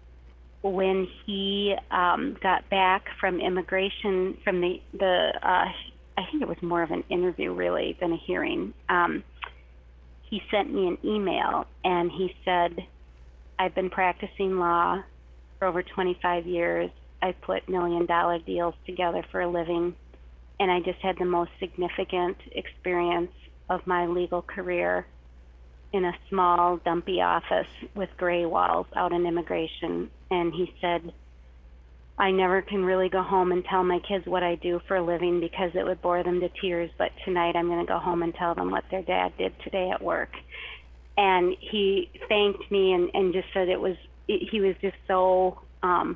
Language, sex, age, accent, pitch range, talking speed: English, female, 30-49, American, 170-190 Hz, 170 wpm